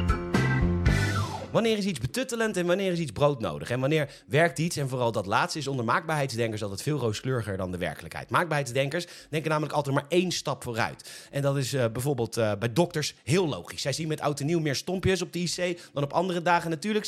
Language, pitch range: Dutch, 130-175 Hz